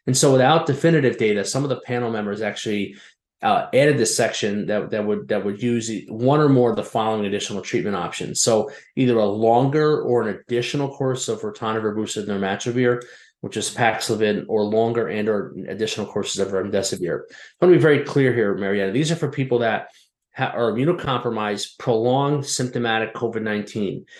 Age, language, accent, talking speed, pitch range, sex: 30-49, English, American, 180 wpm, 105-130 Hz, male